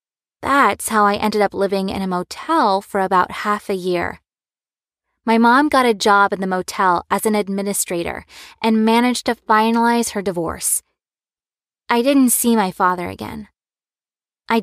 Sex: female